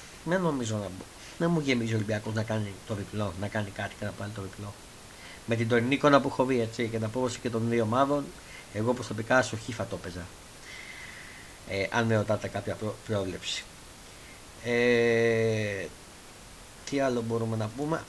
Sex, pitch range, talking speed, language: male, 110-125 Hz, 180 wpm, Greek